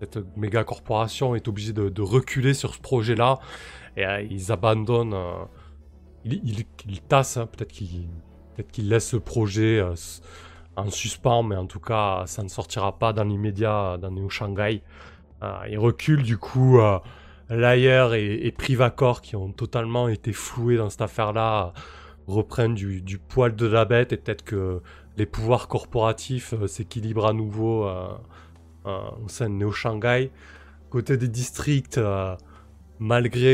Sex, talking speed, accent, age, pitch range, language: male, 160 wpm, French, 20-39, 95-115 Hz, French